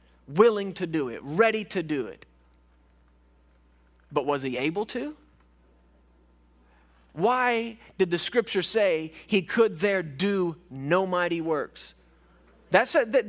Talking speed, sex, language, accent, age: 125 wpm, male, English, American, 40-59